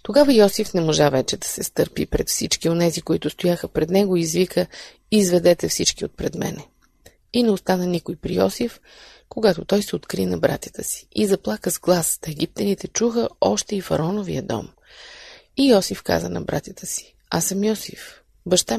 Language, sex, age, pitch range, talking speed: Bulgarian, female, 30-49, 170-210 Hz, 180 wpm